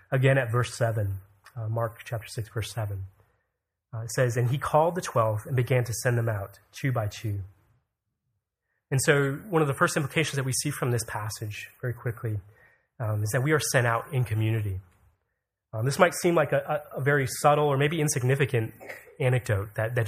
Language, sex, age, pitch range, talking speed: English, male, 30-49, 110-140 Hz, 190 wpm